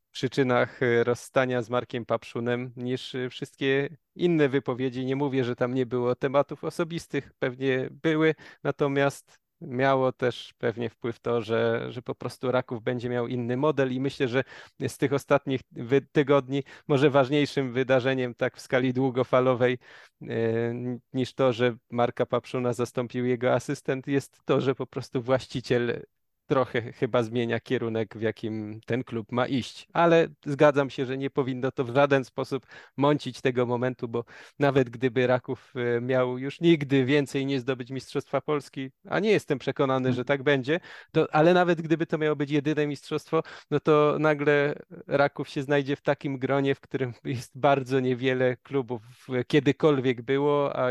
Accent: native